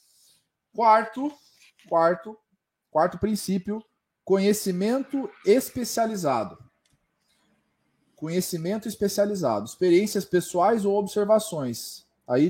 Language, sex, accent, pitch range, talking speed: Portuguese, male, Brazilian, 155-200 Hz, 60 wpm